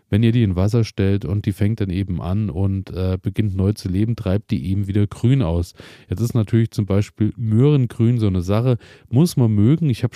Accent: German